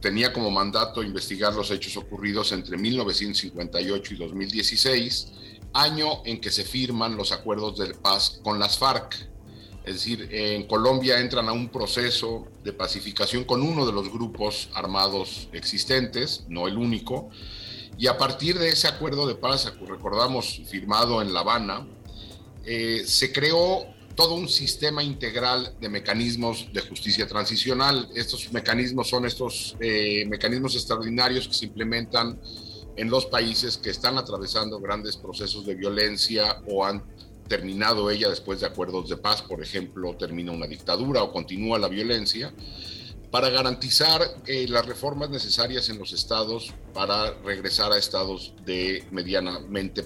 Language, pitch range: English, 100-125 Hz